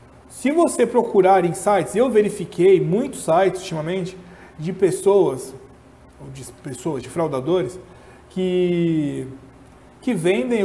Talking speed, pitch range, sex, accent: 105 wpm, 160-205 Hz, male, Brazilian